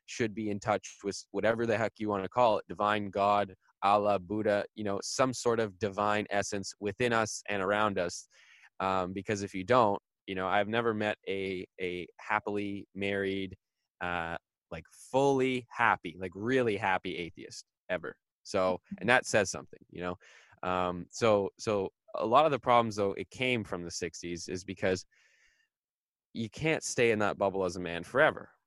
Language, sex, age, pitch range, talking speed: English, male, 20-39, 95-110 Hz, 180 wpm